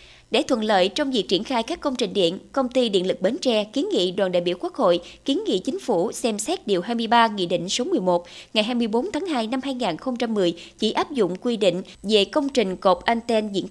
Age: 20-39